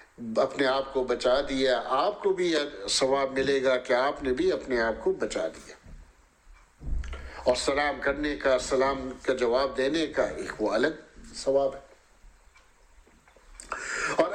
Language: English